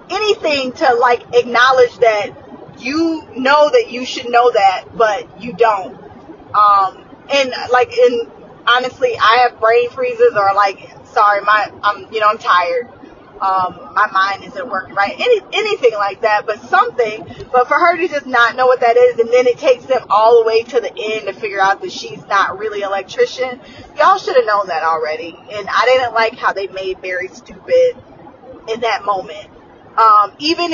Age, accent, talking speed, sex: 20-39, American, 185 wpm, female